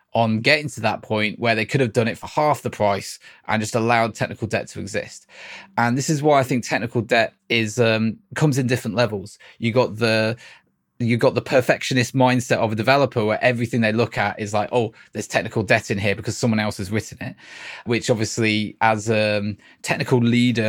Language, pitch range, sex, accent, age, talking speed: English, 105-125 Hz, male, British, 20-39, 210 wpm